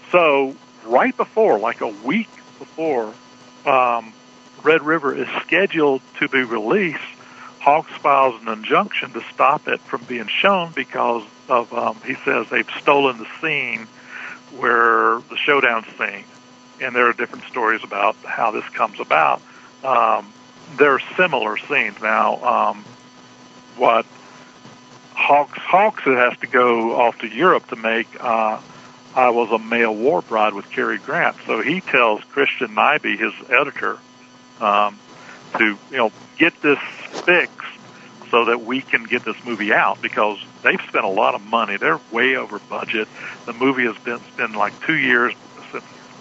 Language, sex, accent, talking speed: English, male, American, 155 wpm